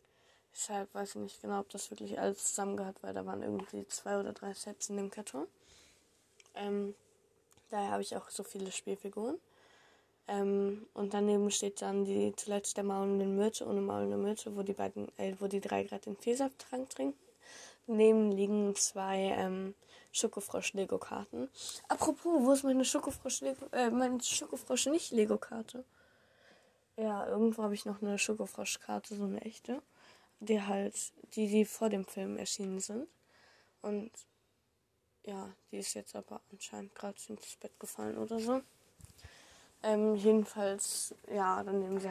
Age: 10-29